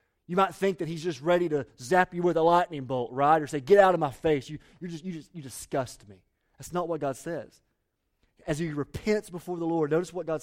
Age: 30-49